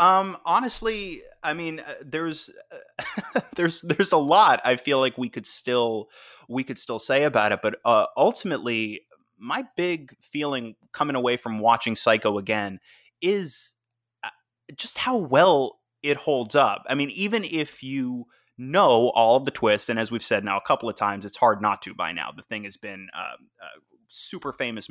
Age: 20-39